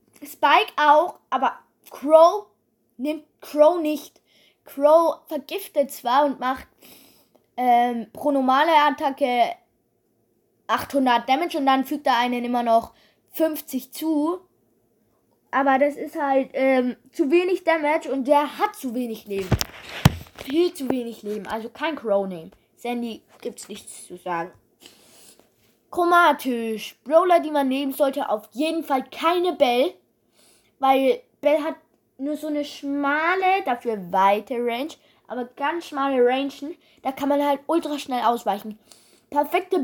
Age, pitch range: 20-39, 240-305 Hz